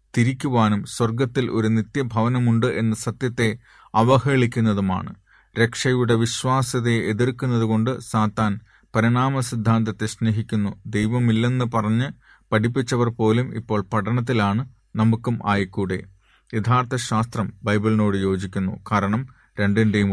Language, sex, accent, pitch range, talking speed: Malayalam, male, native, 105-120 Hz, 85 wpm